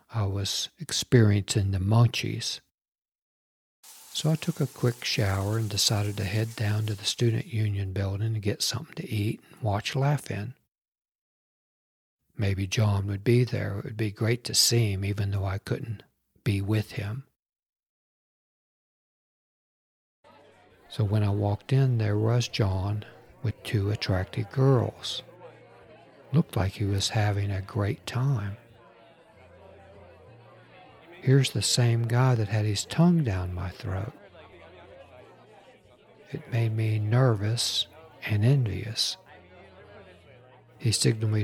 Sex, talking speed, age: male, 125 wpm, 60-79